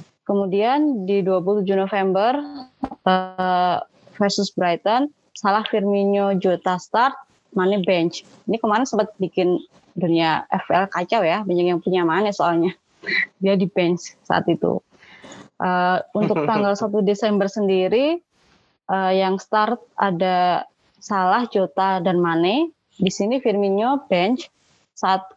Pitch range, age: 185-210 Hz, 20-39